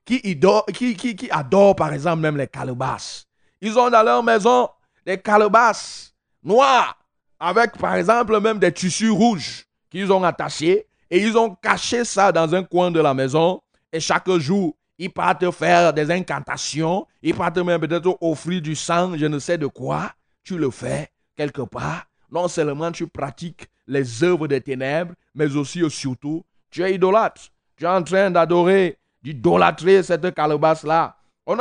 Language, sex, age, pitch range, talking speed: French, male, 30-49, 155-215 Hz, 165 wpm